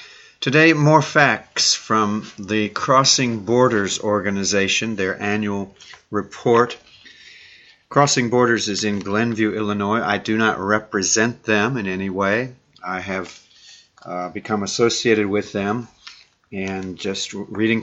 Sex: male